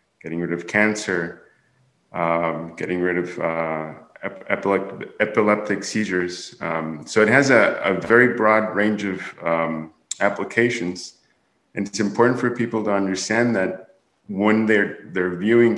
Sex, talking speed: male, 135 wpm